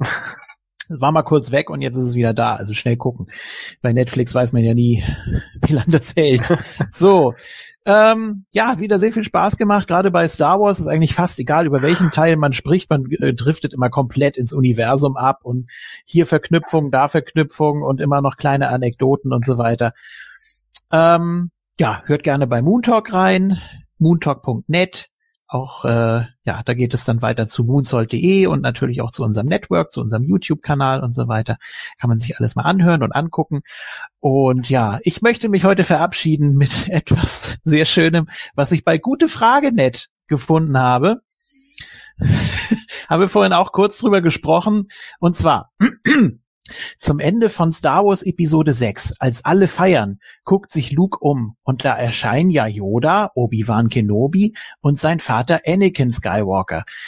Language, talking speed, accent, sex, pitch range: German, 165 wpm, German, male, 125-180 Hz